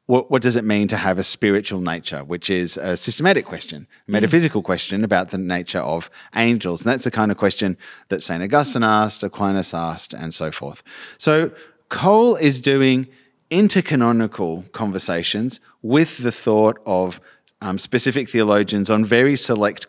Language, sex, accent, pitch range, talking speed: English, male, Australian, 110-145 Hz, 165 wpm